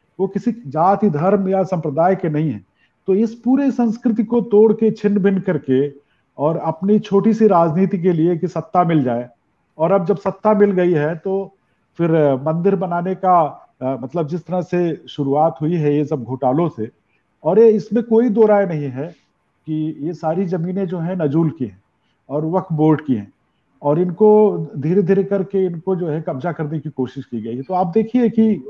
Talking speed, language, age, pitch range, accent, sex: 195 wpm, Hindi, 50-69, 150-200 Hz, native, male